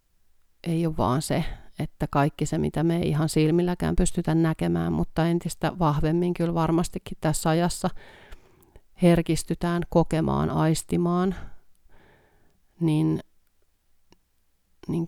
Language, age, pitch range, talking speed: Finnish, 30-49, 145-170 Hz, 105 wpm